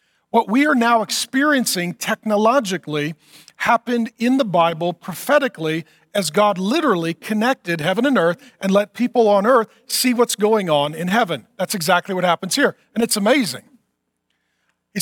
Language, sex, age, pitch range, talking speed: English, male, 40-59, 170-245 Hz, 150 wpm